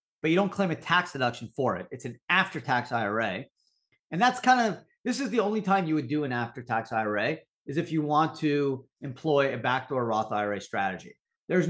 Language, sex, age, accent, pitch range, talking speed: English, male, 40-59, American, 120-165 Hz, 205 wpm